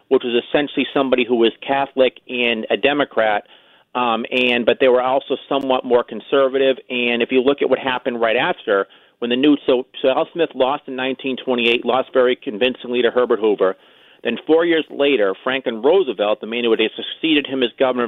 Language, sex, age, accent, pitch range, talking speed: English, male, 40-59, American, 120-140 Hz, 190 wpm